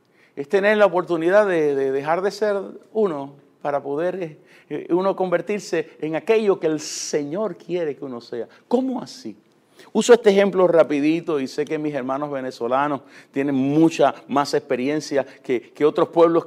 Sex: male